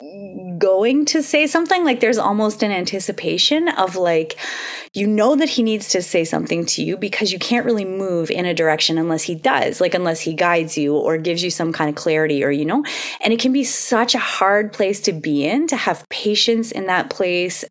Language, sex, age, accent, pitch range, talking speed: English, female, 20-39, American, 165-240 Hz, 215 wpm